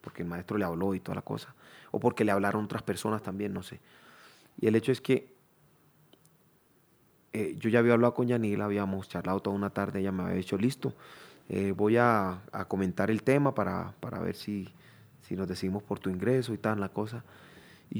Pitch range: 100-125 Hz